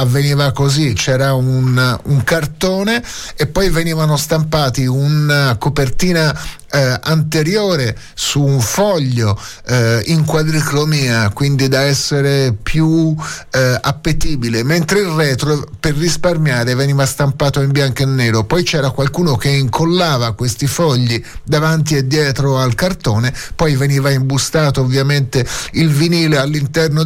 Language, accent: Italian, native